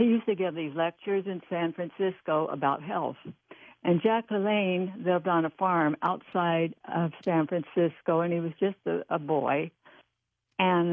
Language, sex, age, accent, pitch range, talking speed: English, female, 60-79, American, 155-180 Hz, 165 wpm